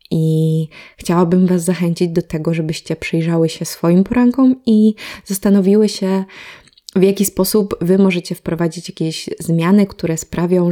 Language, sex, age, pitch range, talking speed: Polish, female, 20-39, 160-190 Hz, 135 wpm